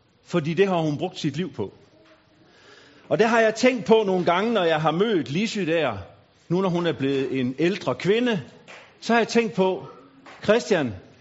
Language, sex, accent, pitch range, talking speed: Danish, male, native, 145-215 Hz, 195 wpm